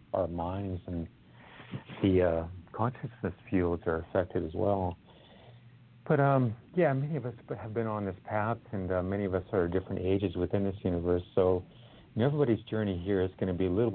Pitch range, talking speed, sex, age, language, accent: 90-115 Hz, 185 wpm, male, 50-69, English, American